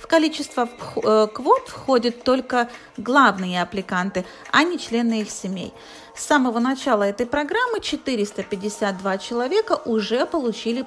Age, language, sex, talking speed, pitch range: 40-59, Russian, female, 115 wpm, 210-300 Hz